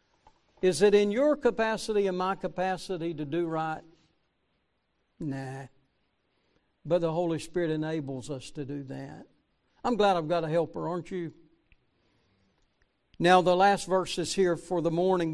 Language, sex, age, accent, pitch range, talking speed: English, male, 60-79, American, 170-215 Hz, 145 wpm